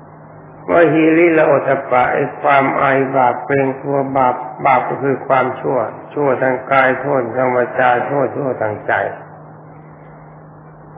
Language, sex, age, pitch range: Thai, male, 60-79, 120-145 Hz